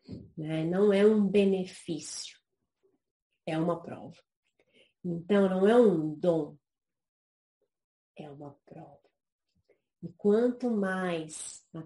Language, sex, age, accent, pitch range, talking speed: Portuguese, female, 30-49, Brazilian, 165-230 Hz, 95 wpm